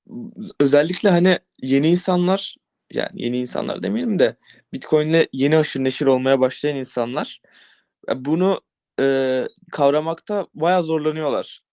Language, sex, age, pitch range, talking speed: Turkish, male, 20-39, 145-185 Hz, 105 wpm